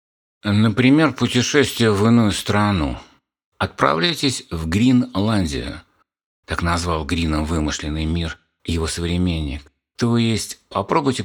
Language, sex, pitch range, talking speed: Russian, male, 80-105 Hz, 95 wpm